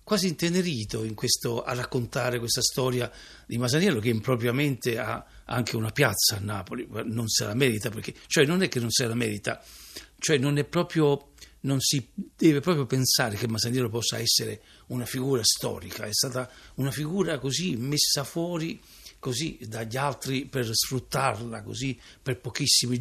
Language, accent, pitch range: Italian, native, 115-150 Hz